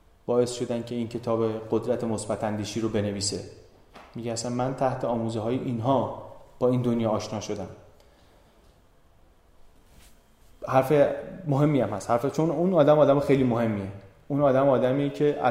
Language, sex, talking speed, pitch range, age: Persian, male, 140 wpm, 110-140 Hz, 30-49